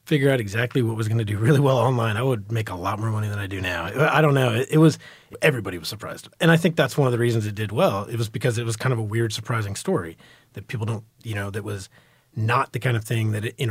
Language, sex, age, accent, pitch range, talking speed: English, male, 30-49, American, 110-135 Hz, 290 wpm